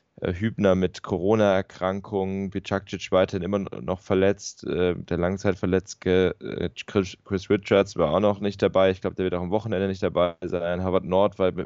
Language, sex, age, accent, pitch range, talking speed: German, male, 10-29, German, 90-100 Hz, 155 wpm